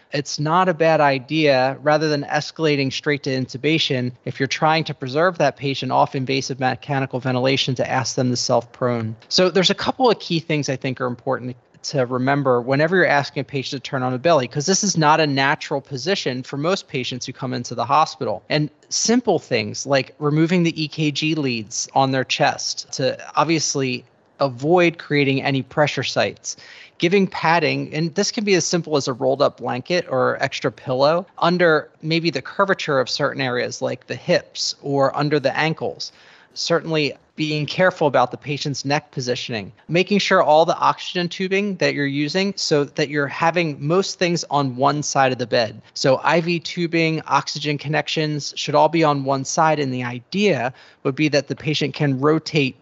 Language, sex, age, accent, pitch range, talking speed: English, male, 20-39, American, 135-165 Hz, 185 wpm